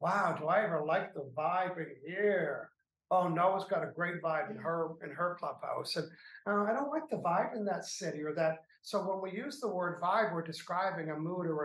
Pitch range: 170-200 Hz